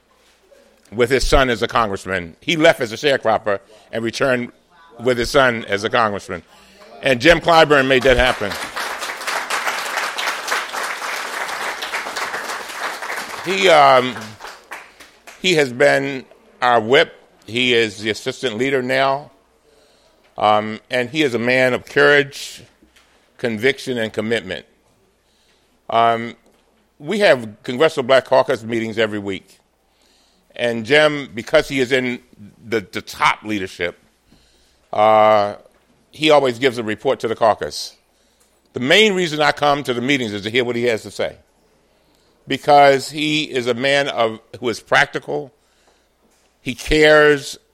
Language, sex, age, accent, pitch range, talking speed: English, male, 50-69, American, 110-145 Hz, 130 wpm